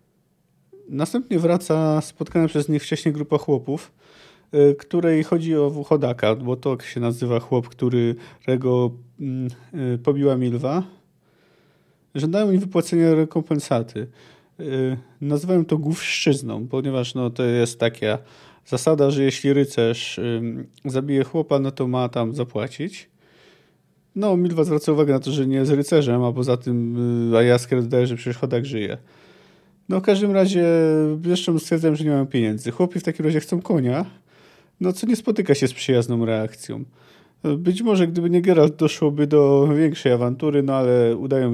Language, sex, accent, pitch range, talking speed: Polish, male, native, 125-160 Hz, 155 wpm